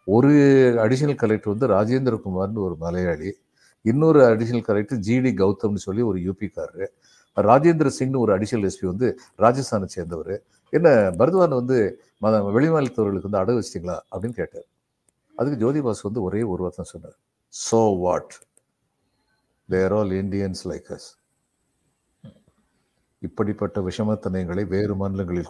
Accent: native